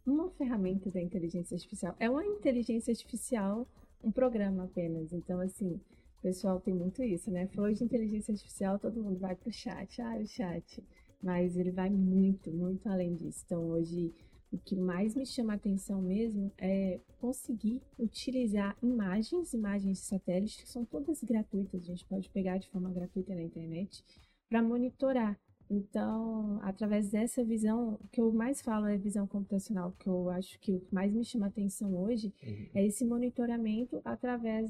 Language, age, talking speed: Portuguese, 20-39, 170 wpm